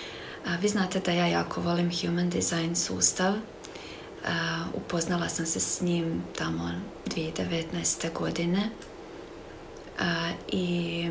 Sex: female